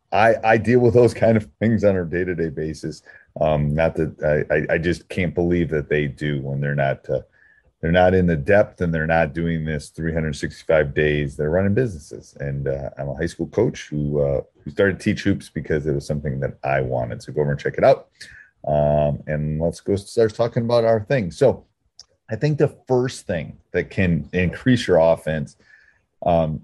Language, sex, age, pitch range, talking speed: English, male, 30-49, 75-100 Hz, 210 wpm